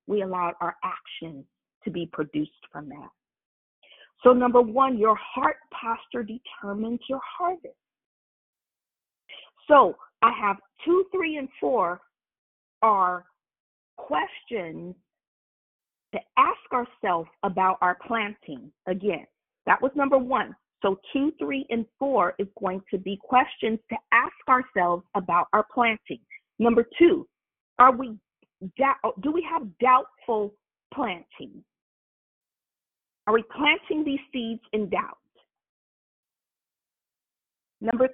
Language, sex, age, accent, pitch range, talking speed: English, female, 40-59, American, 205-270 Hz, 110 wpm